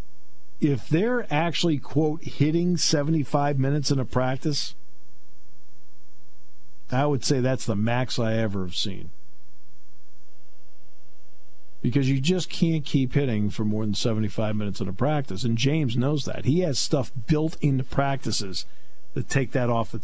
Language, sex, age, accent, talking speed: English, male, 50-69, American, 145 wpm